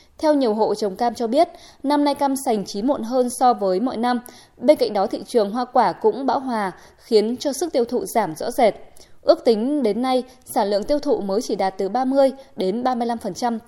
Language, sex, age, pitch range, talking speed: Vietnamese, female, 20-39, 210-270 Hz, 225 wpm